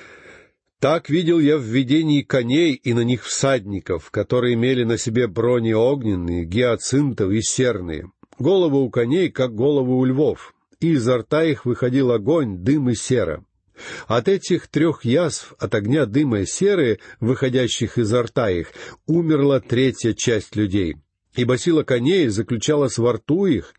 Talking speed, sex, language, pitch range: 150 wpm, male, Russian, 110-150 Hz